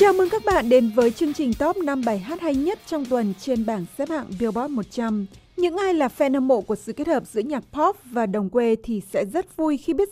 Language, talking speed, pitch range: Vietnamese, 260 wpm, 220-305 Hz